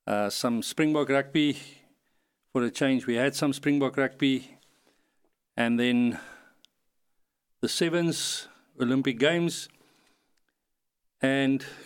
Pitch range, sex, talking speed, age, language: 130-160 Hz, male, 95 wpm, 50-69, English